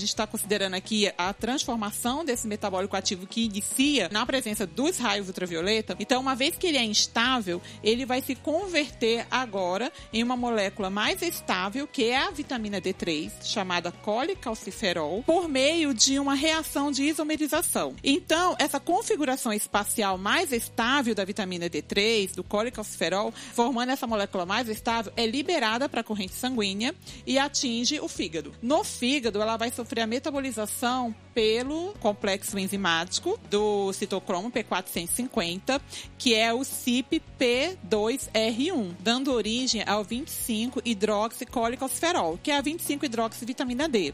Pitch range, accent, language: 210-275 Hz, Brazilian, Portuguese